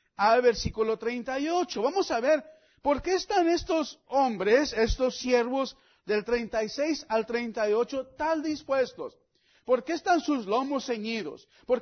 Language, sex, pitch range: English, male, 250-310 Hz